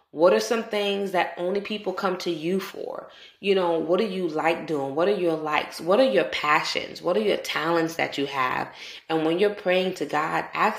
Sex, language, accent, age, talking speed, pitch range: female, English, American, 20-39, 220 wpm, 155-185 Hz